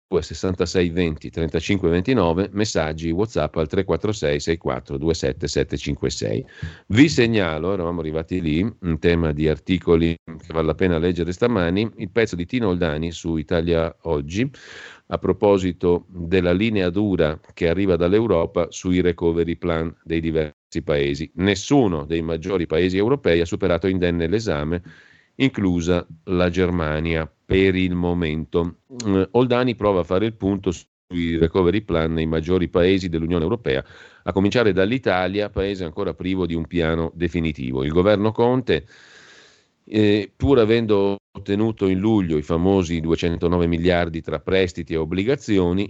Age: 40-59